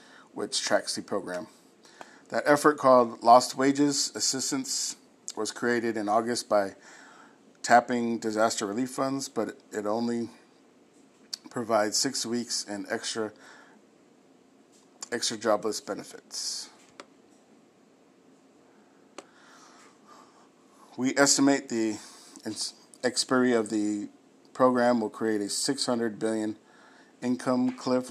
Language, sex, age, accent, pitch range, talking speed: English, male, 50-69, American, 110-135 Hz, 95 wpm